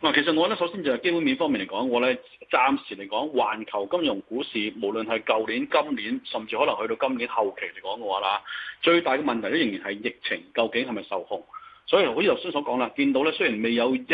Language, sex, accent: Chinese, male, native